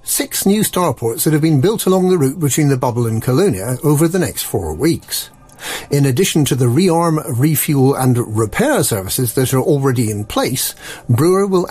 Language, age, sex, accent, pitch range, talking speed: English, 50-69, male, British, 125-170 Hz, 185 wpm